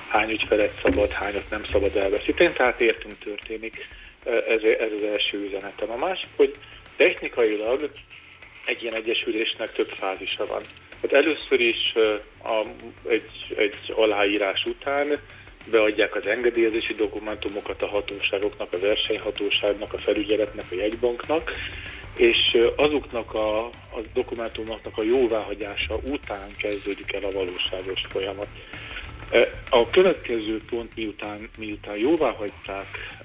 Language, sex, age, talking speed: Hungarian, male, 40-59, 110 wpm